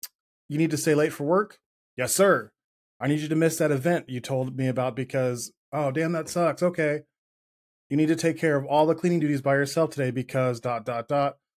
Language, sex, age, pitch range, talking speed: English, male, 20-39, 125-150 Hz, 225 wpm